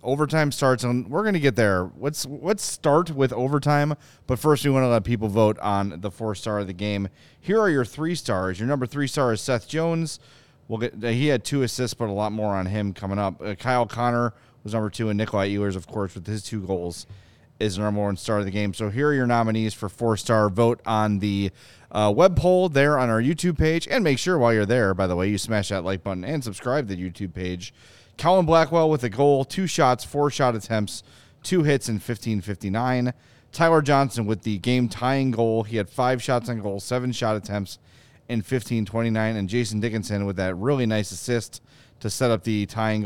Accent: American